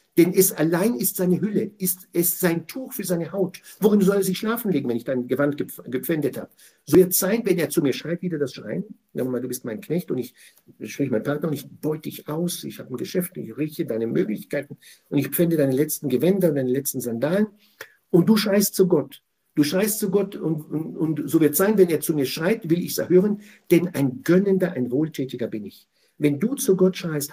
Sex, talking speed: male, 230 wpm